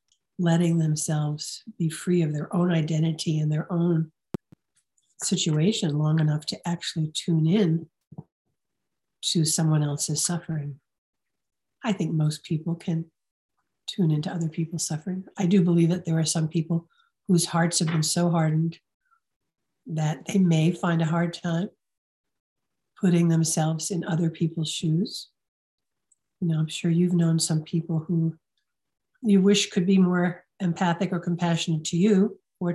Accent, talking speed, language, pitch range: American, 145 wpm, English, 160-185 Hz